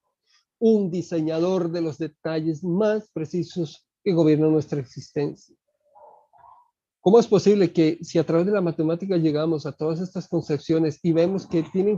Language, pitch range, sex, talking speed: Spanish, 160-200 Hz, male, 150 wpm